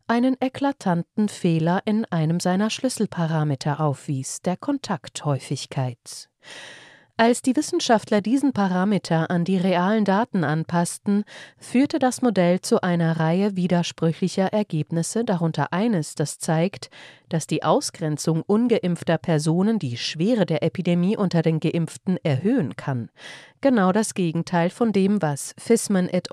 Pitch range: 160-220 Hz